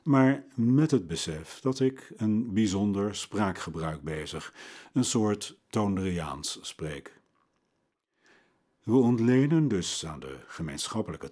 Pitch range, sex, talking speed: 85-120 Hz, male, 105 wpm